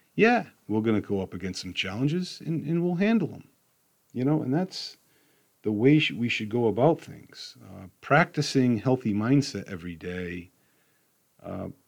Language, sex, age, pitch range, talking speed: English, male, 40-59, 100-145 Hz, 160 wpm